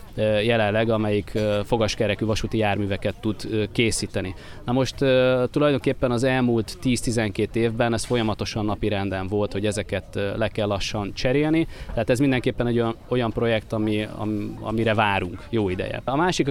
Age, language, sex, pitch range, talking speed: 20-39, Hungarian, male, 105-120 Hz, 140 wpm